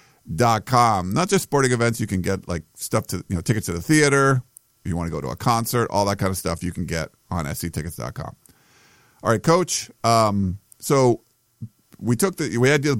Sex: male